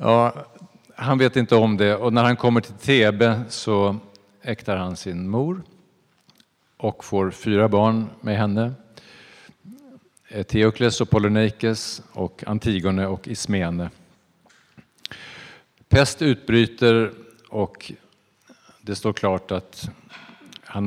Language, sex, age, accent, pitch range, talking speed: Swedish, male, 50-69, Norwegian, 95-115 Hz, 110 wpm